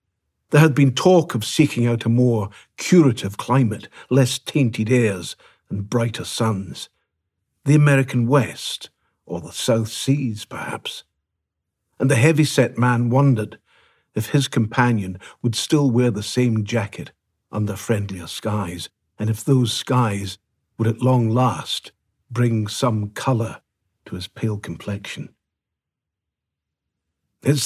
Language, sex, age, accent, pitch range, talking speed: English, male, 60-79, British, 105-135 Hz, 125 wpm